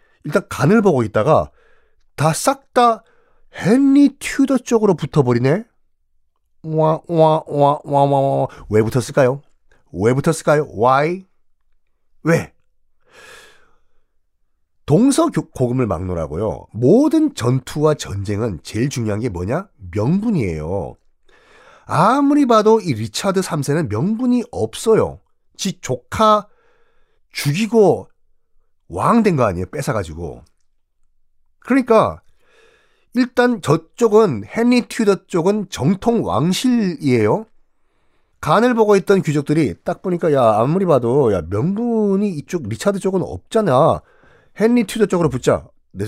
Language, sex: Korean, male